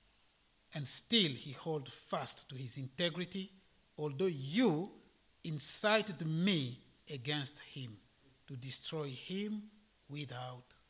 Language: English